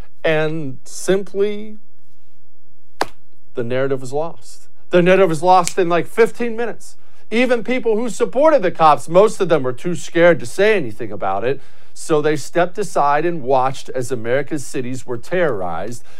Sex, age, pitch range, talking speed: male, 50-69, 130-185 Hz, 155 wpm